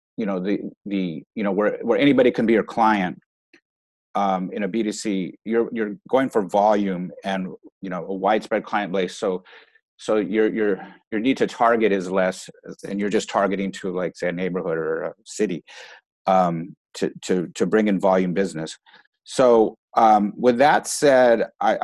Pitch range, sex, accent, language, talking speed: 90-110 Hz, male, American, English, 180 wpm